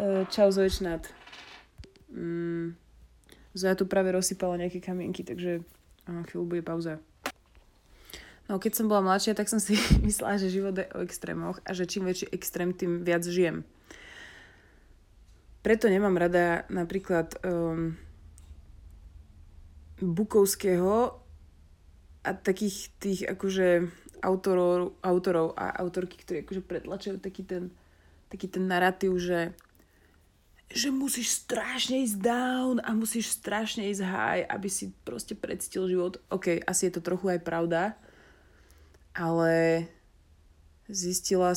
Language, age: Slovak, 20-39